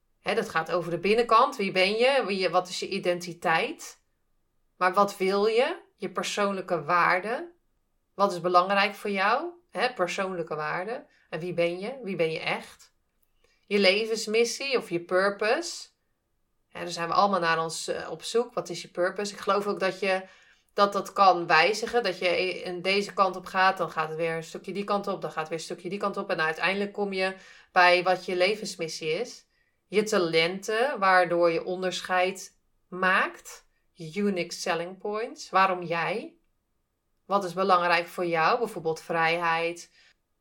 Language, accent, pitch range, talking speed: Dutch, Dutch, 170-205 Hz, 175 wpm